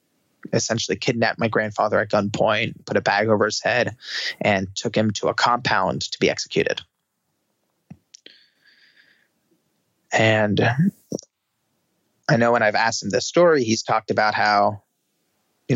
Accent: American